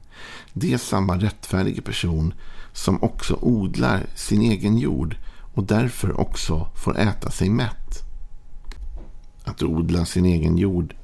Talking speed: 125 wpm